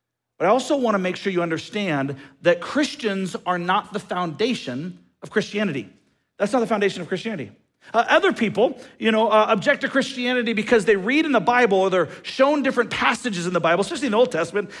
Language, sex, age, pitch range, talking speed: English, male, 40-59, 215-285 Hz, 205 wpm